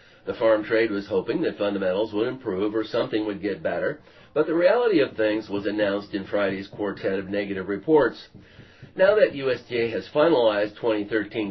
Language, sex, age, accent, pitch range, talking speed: English, male, 50-69, American, 105-145 Hz, 170 wpm